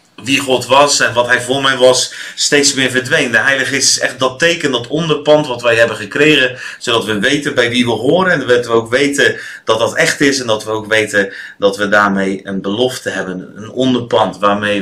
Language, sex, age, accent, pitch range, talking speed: Dutch, male, 30-49, Dutch, 110-130 Hz, 220 wpm